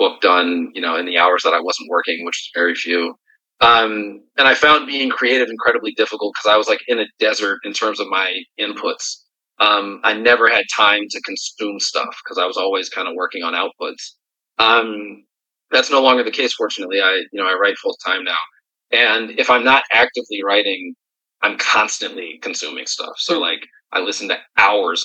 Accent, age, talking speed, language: American, 30-49, 195 wpm, English